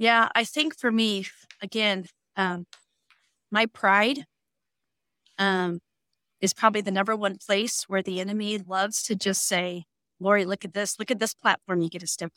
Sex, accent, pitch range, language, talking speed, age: female, American, 185-225 Hz, English, 170 wpm, 40-59